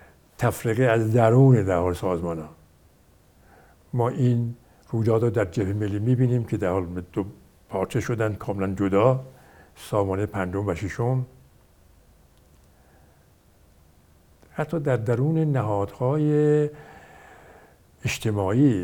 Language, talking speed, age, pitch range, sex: Persian, 90 wpm, 60-79, 90-125 Hz, male